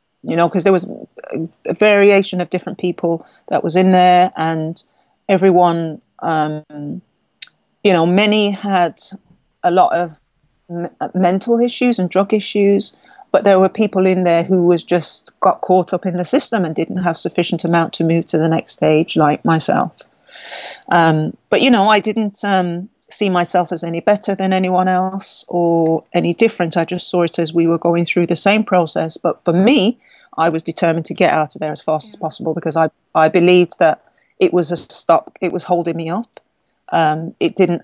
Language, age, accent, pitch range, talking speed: English, 40-59, British, 165-195 Hz, 190 wpm